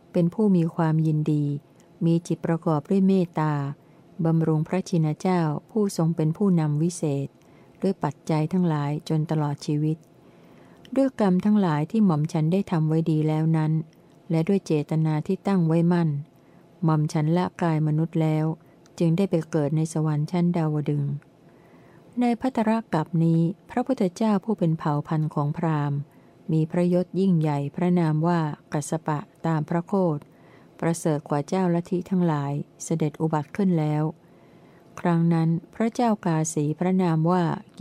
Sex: female